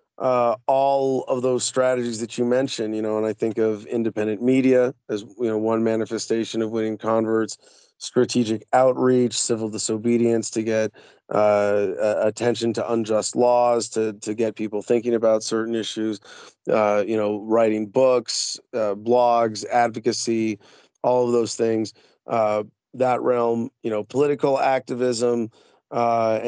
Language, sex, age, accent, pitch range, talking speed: English, male, 30-49, American, 110-120 Hz, 145 wpm